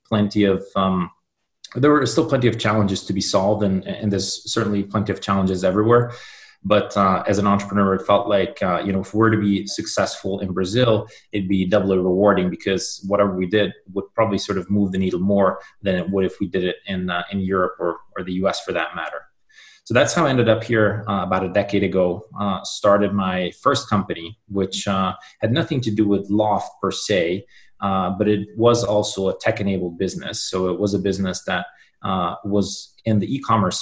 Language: English